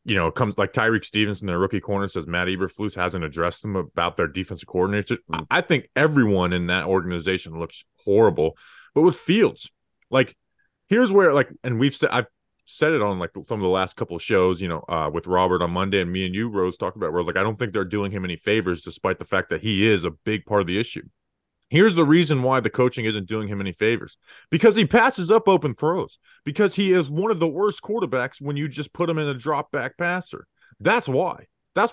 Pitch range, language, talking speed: 95-155 Hz, English, 235 wpm